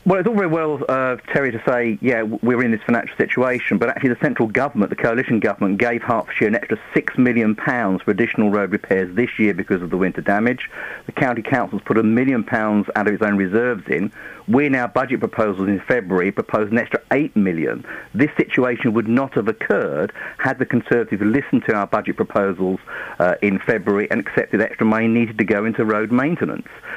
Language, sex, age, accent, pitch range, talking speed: English, male, 50-69, British, 105-135 Hz, 210 wpm